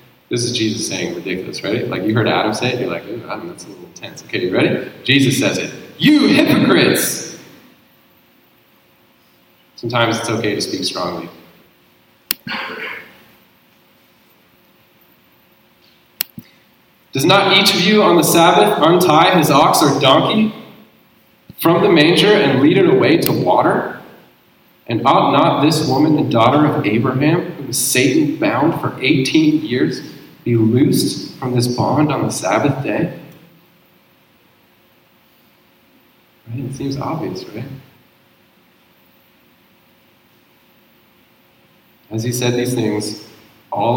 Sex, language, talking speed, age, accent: male, English, 125 wpm, 30-49, American